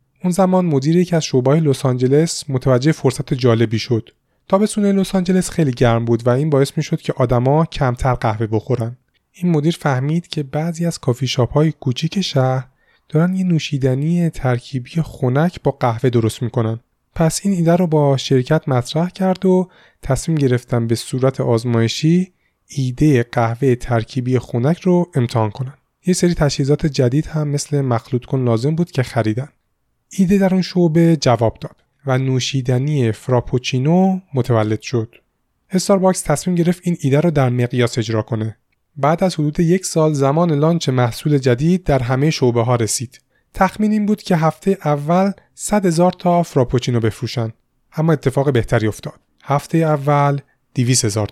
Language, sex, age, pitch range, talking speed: Persian, male, 30-49, 125-165 Hz, 160 wpm